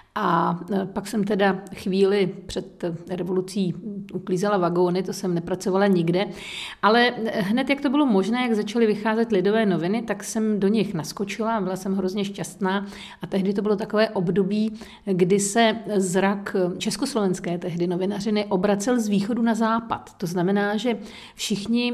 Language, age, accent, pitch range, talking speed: Czech, 50-69, native, 190-225 Hz, 150 wpm